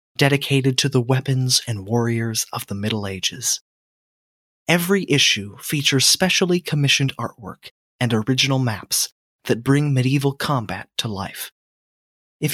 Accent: American